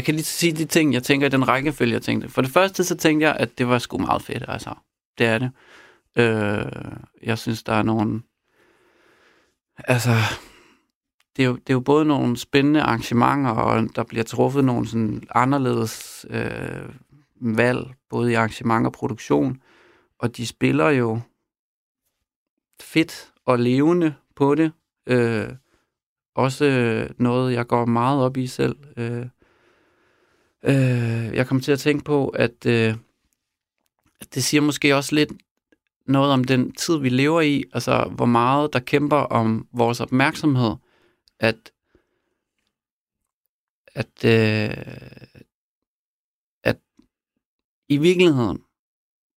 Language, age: Danish, 40-59